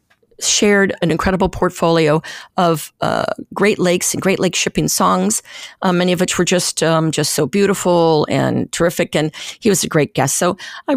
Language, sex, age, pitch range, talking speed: English, female, 50-69, 160-215 Hz, 180 wpm